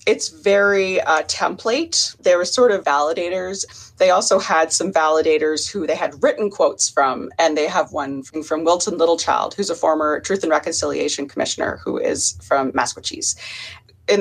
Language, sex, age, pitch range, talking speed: English, female, 30-49, 155-200 Hz, 170 wpm